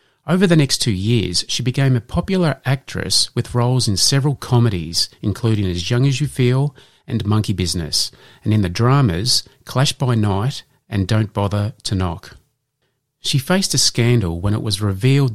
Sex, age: male, 40-59